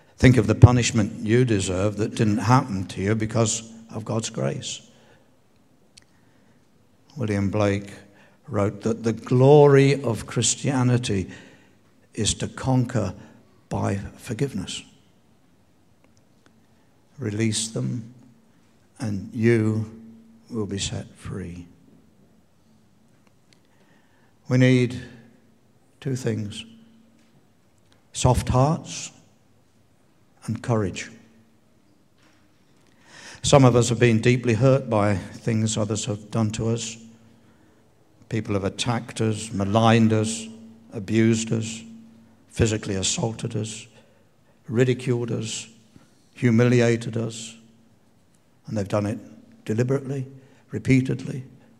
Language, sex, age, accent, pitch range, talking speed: English, male, 60-79, British, 110-120 Hz, 90 wpm